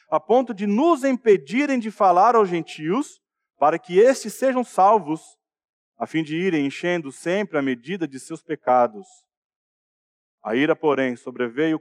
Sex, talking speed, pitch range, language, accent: male, 145 wpm, 150-215 Hz, Portuguese, Brazilian